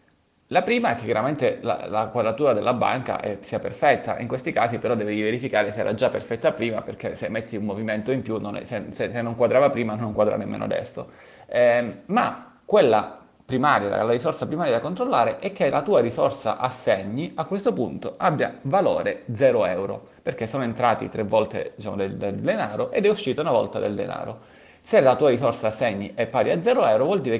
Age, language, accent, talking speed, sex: 30-49, Italian, native, 200 wpm, male